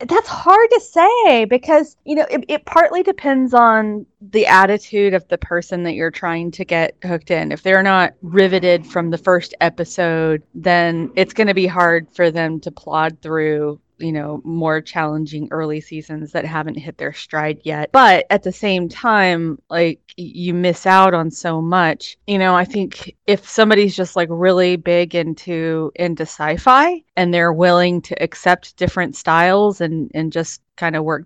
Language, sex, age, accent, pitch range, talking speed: English, female, 30-49, American, 160-195 Hz, 180 wpm